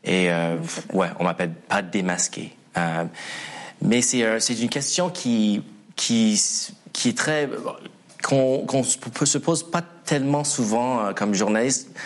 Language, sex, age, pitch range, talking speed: French, male, 20-39, 100-130 Hz, 135 wpm